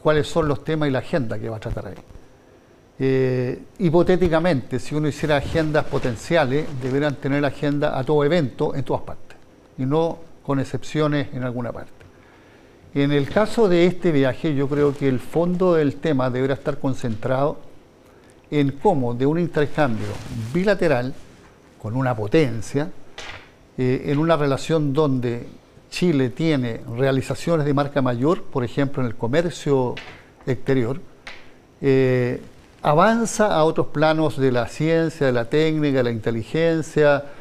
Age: 50-69